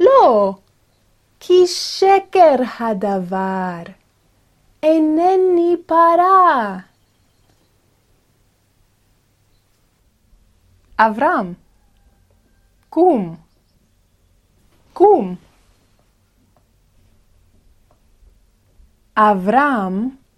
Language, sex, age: Hebrew, female, 30-49